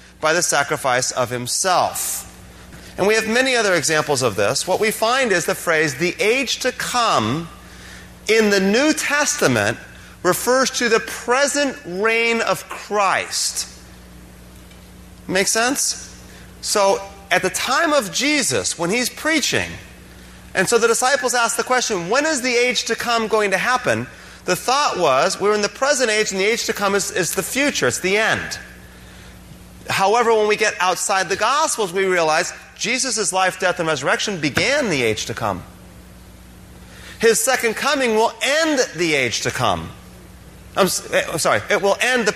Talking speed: 165 wpm